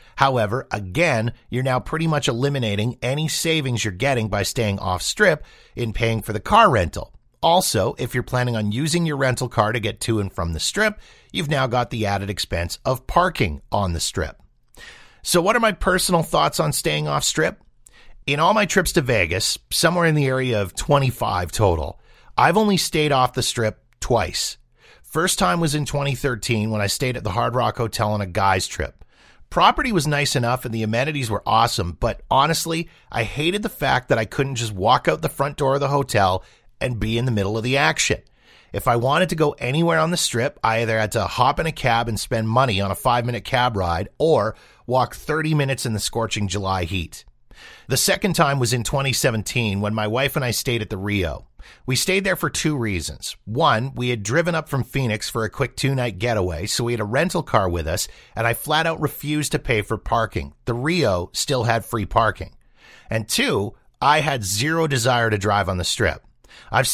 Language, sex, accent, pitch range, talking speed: English, male, American, 105-145 Hz, 210 wpm